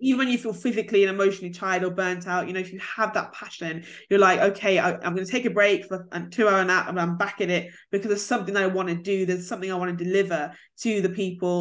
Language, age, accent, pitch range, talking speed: English, 20-39, British, 180-220 Hz, 280 wpm